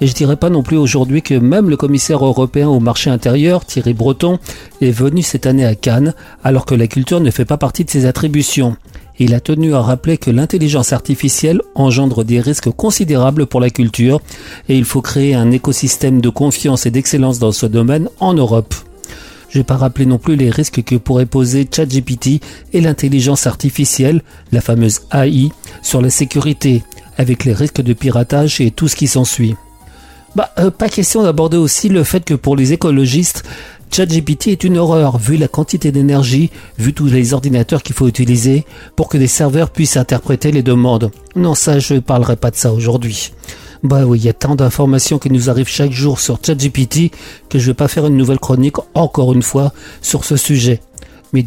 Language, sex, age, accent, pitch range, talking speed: French, male, 40-59, French, 125-150 Hz, 195 wpm